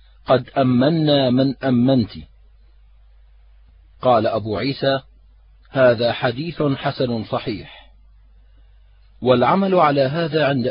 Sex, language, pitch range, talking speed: male, Arabic, 95-145 Hz, 85 wpm